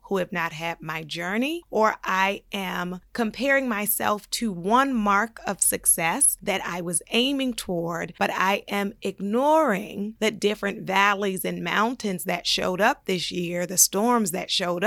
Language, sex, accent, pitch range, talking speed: English, female, American, 185-250 Hz, 155 wpm